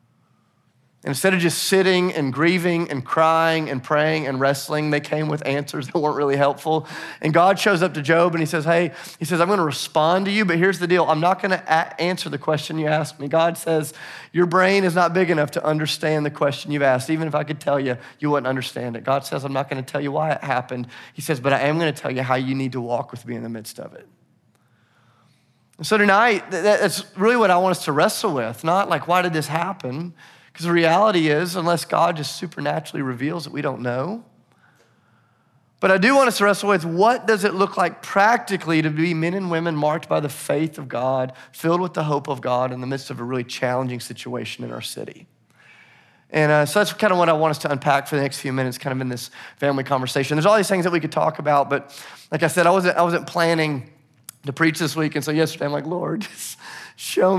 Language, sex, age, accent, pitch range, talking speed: English, male, 30-49, American, 140-170 Hz, 240 wpm